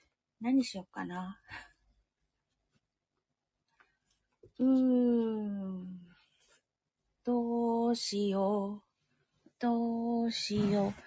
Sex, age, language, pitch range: female, 30-49, Japanese, 195-245 Hz